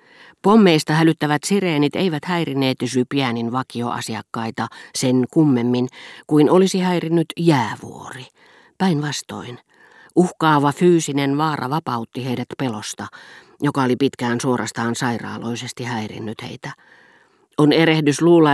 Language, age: Finnish, 40-59